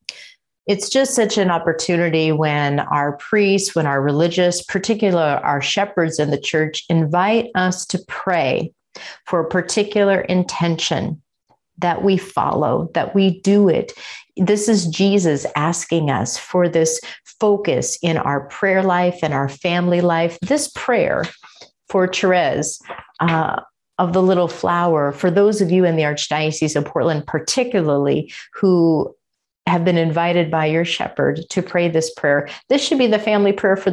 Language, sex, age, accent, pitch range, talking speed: English, female, 40-59, American, 155-190 Hz, 150 wpm